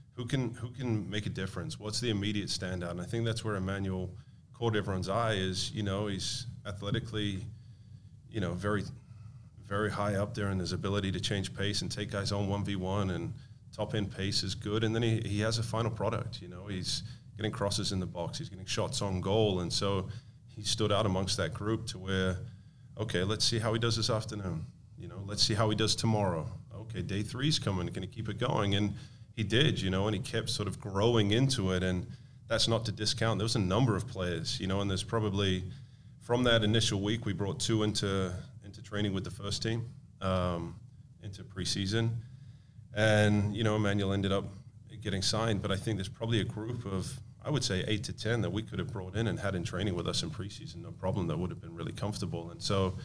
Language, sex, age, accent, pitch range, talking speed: English, male, 30-49, American, 100-115 Hz, 225 wpm